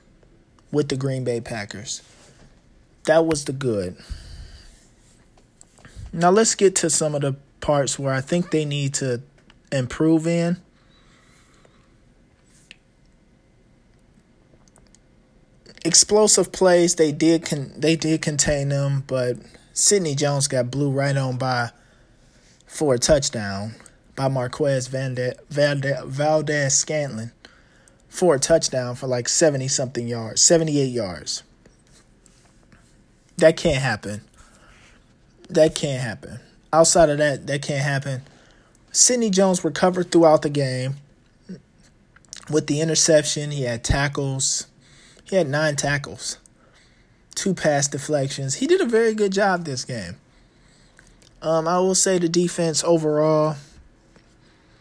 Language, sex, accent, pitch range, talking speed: English, male, American, 130-165 Hz, 115 wpm